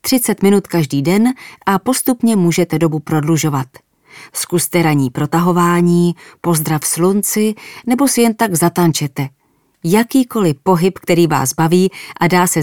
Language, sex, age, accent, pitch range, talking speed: English, female, 30-49, Czech, 160-200 Hz, 130 wpm